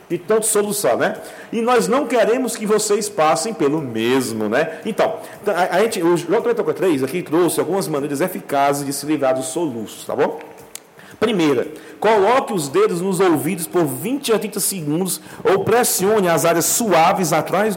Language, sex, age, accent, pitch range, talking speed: Portuguese, male, 40-59, Brazilian, 150-205 Hz, 160 wpm